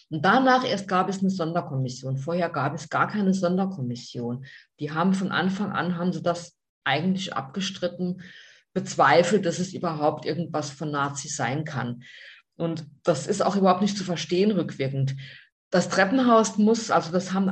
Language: German